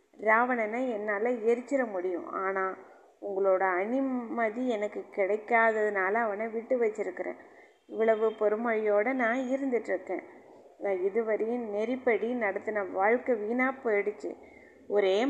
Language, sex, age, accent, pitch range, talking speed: Tamil, female, 20-39, native, 200-240 Hz, 95 wpm